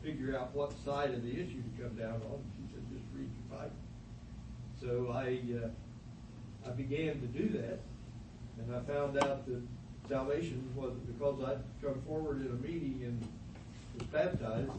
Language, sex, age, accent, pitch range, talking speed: English, male, 60-79, American, 115-140 Hz, 170 wpm